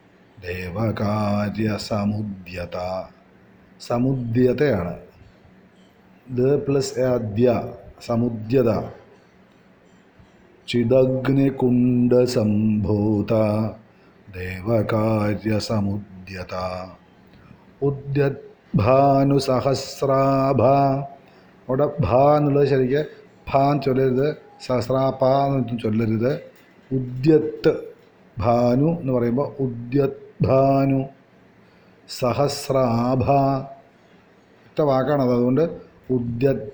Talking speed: 35 wpm